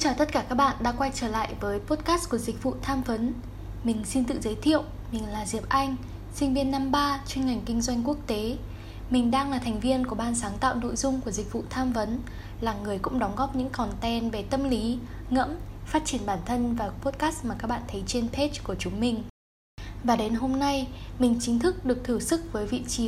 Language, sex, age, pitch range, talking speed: Vietnamese, female, 10-29, 215-275 Hz, 235 wpm